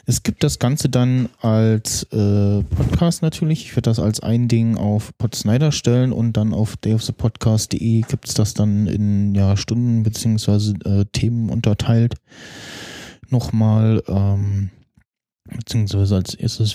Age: 20-39